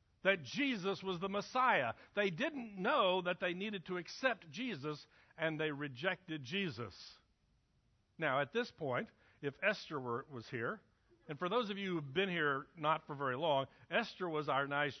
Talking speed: 170 wpm